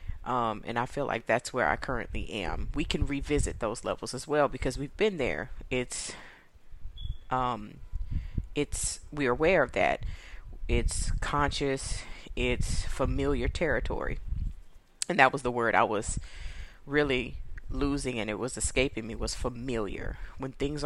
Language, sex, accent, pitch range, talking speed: English, female, American, 115-145 Hz, 145 wpm